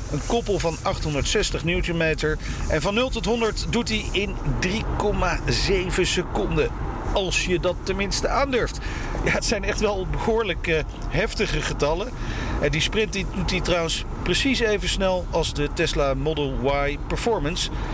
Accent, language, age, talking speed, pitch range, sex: Dutch, Dutch, 40-59, 145 wpm, 130-175 Hz, male